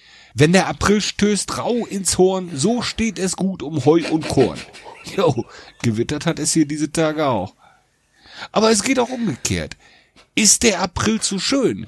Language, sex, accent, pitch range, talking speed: German, male, German, 120-185 Hz, 165 wpm